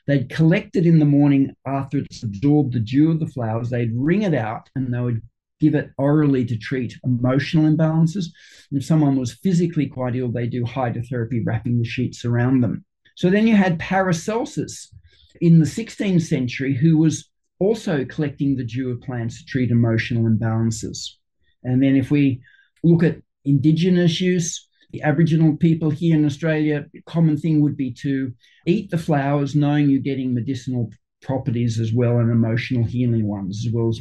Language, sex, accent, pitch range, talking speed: English, male, Australian, 125-160 Hz, 175 wpm